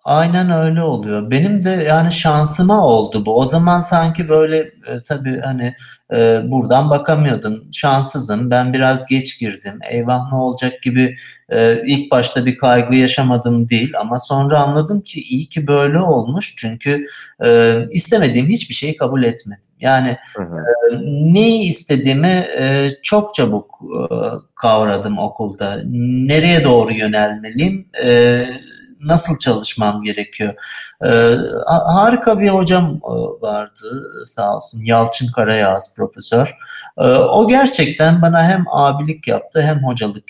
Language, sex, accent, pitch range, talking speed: Turkish, male, native, 120-170 Hz, 130 wpm